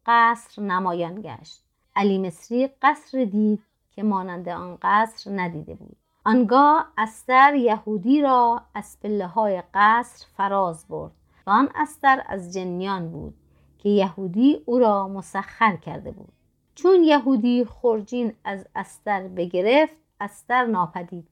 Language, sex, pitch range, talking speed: Persian, female, 185-235 Hz, 125 wpm